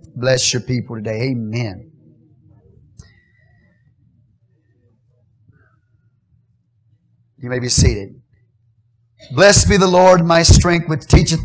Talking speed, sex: 90 wpm, male